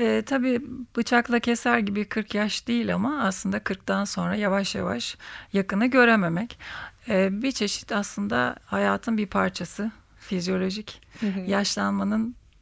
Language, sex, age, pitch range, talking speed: Turkish, female, 40-59, 190-235 Hz, 120 wpm